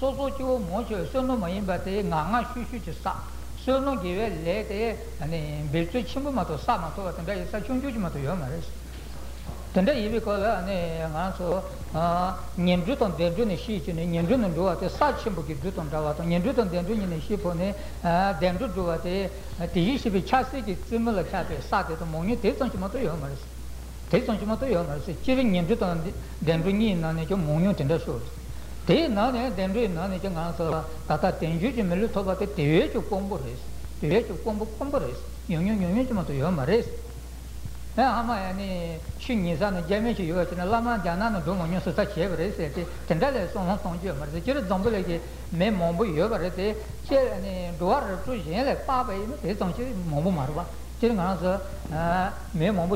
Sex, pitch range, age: male, 165-225 Hz, 60-79